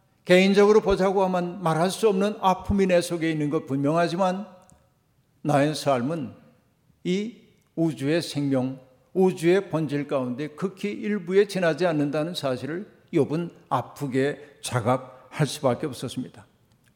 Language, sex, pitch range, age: Korean, male, 145-175 Hz, 50-69